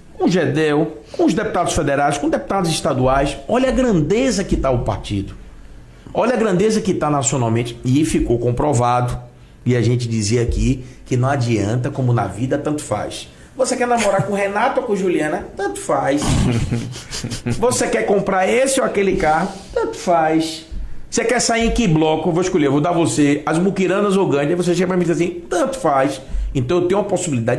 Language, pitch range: Portuguese, 120-195 Hz